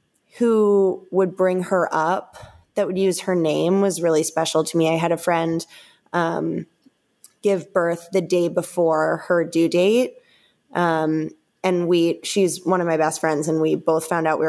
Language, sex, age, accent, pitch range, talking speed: English, female, 20-39, American, 160-185 Hz, 180 wpm